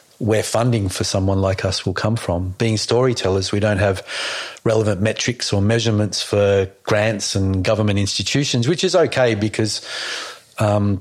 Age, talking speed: 40-59, 155 wpm